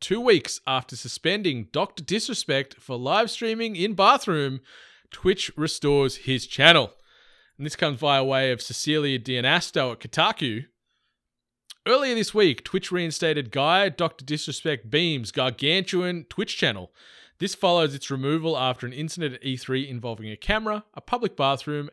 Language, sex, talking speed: English, male, 140 wpm